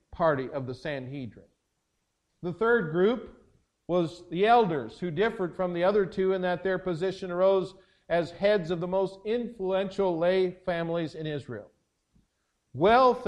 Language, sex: English, male